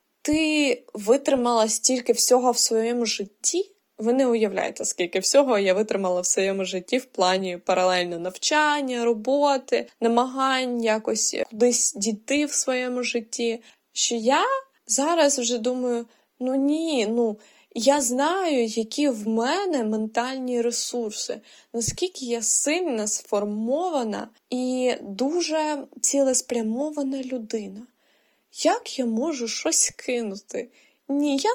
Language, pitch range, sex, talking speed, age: Ukrainian, 220-285 Hz, female, 110 wpm, 20-39